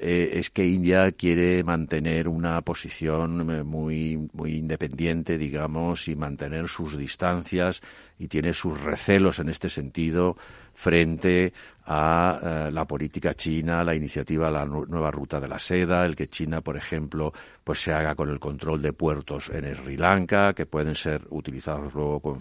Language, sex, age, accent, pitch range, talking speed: Spanish, male, 50-69, Spanish, 75-90 Hz, 165 wpm